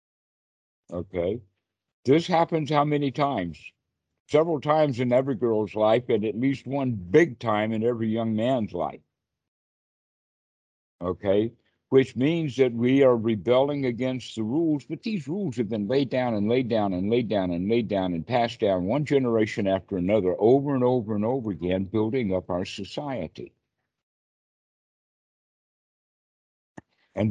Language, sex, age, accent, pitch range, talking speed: English, male, 60-79, American, 105-135 Hz, 145 wpm